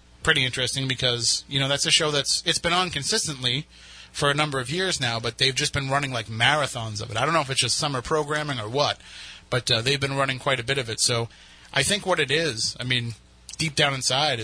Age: 30-49